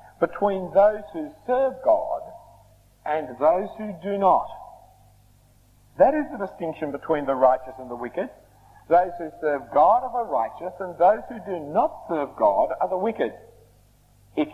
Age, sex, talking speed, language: 50-69, male, 155 wpm, English